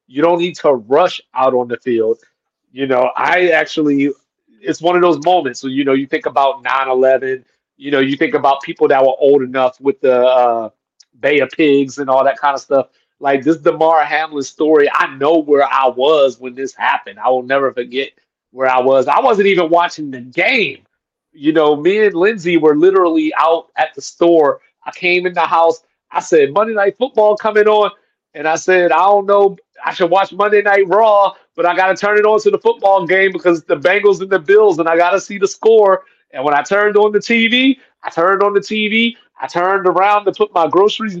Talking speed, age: 220 wpm, 30-49